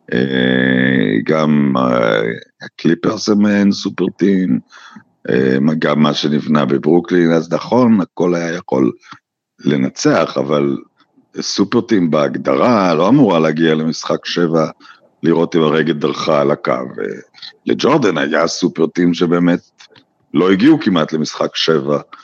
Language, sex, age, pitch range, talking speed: Hebrew, male, 50-69, 80-115 Hz, 105 wpm